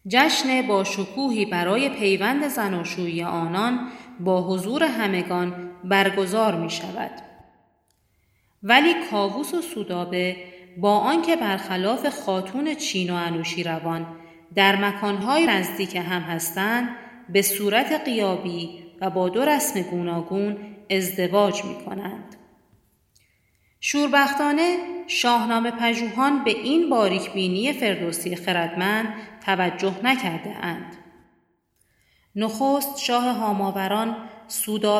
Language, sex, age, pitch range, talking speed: Persian, female, 40-59, 180-235 Hz, 95 wpm